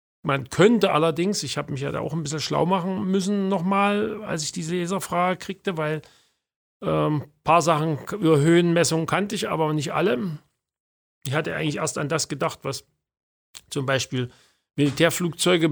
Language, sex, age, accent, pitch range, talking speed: German, male, 50-69, German, 145-175 Hz, 160 wpm